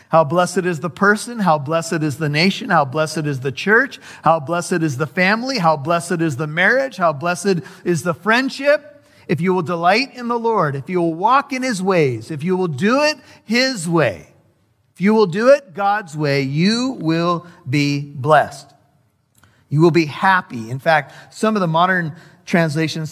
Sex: male